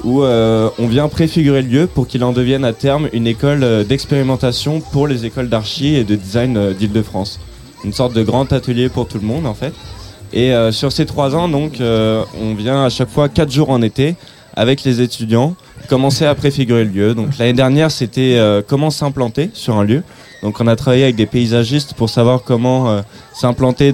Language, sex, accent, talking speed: French, male, French, 210 wpm